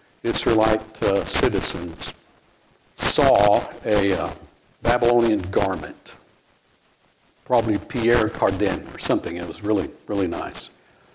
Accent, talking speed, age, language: American, 95 wpm, 50-69, English